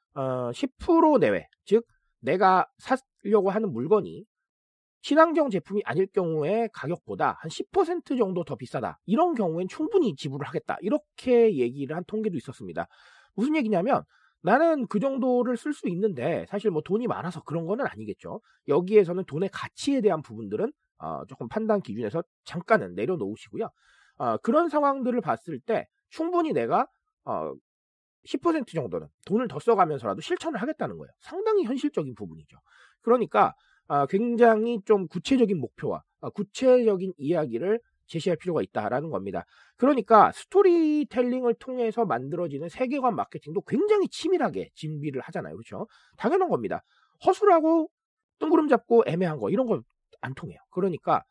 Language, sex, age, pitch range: Korean, male, 40-59, 170-275 Hz